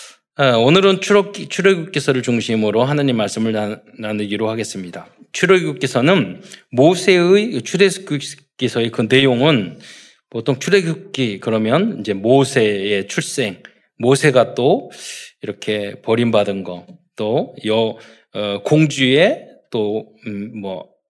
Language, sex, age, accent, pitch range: Korean, male, 20-39, native, 110-160 Hz